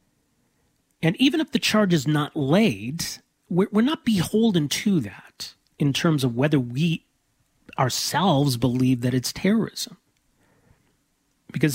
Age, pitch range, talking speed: 40-59, 125-165 Hz, 125 wpm